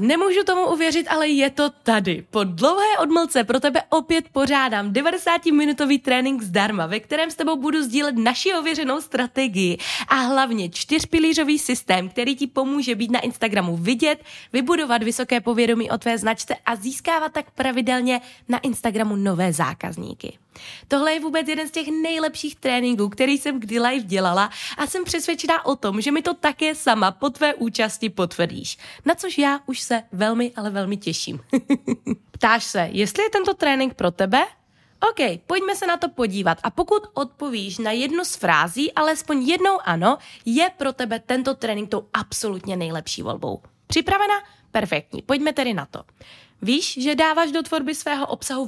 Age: 20-39